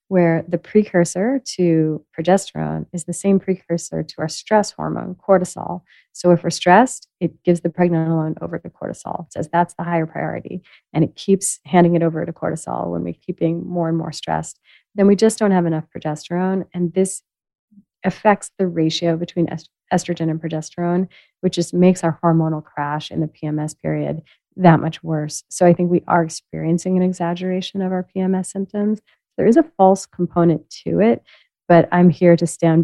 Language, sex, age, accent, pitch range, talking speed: English, female, 30-49, American, 160-190 Hz, 185 wpm